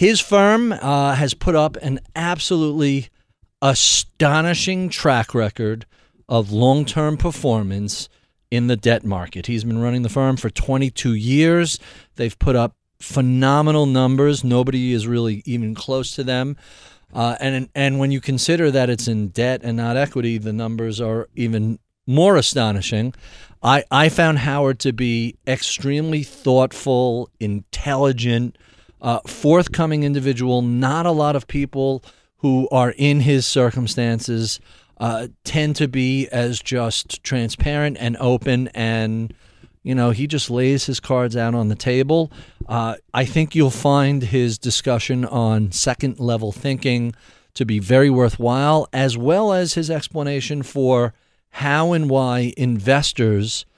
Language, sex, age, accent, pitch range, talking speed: English, male, 40-59, American, 115-140 Hz, 140 wpm